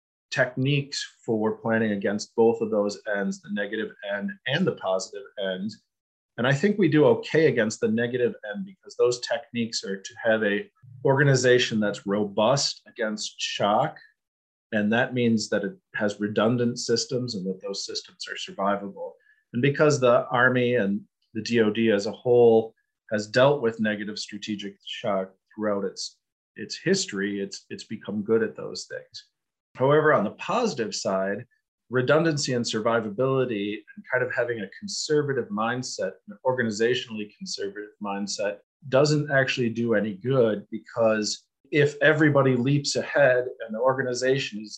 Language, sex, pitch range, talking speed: English, male, 105-140 Hz, 150 wpm